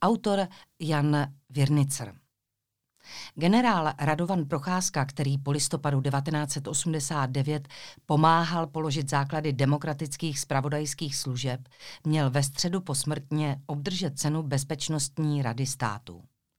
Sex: female